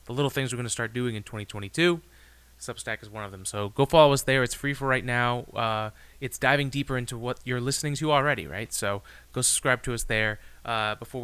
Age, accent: 30-49, American